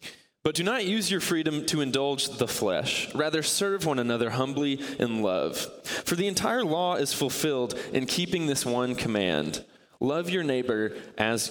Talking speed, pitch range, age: 165 wpm, 110-145 Hz, 20-39